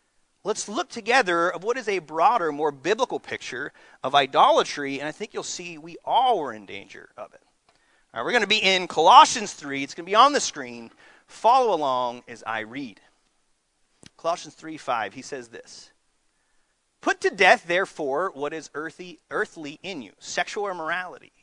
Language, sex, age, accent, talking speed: English, male, 30-49, American, 180 wpm